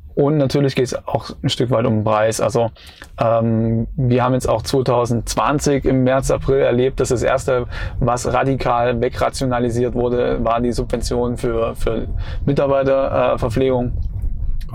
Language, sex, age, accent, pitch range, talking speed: German, male, 20-39, German, 115-130 Hz, 145 wpm